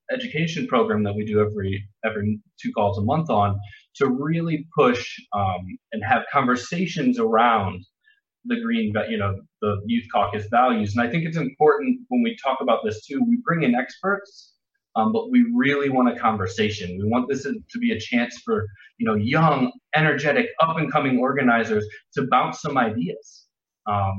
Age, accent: 20-39, American